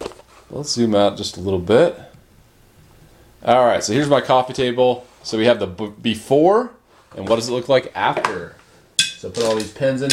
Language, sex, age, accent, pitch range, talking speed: English, male, 30-49, American, 115-150 Hz, 195 wpm